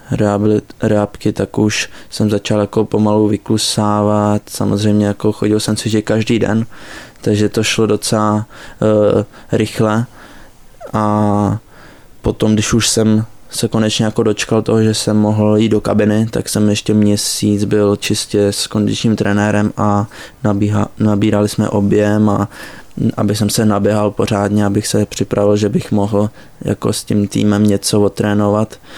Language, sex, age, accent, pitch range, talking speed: Czech, male, 20-39, native, 105-110 Hz, 145 wpm